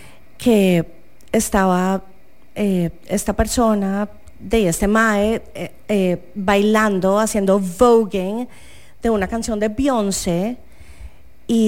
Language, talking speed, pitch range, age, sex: English, 90 wpm, 175-230 Hz, 30-49, female